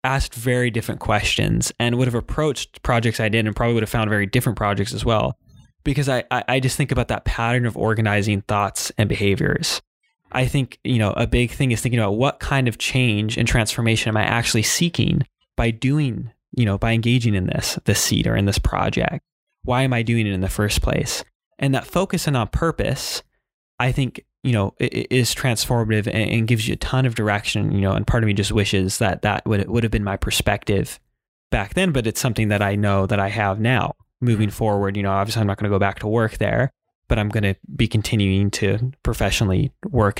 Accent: American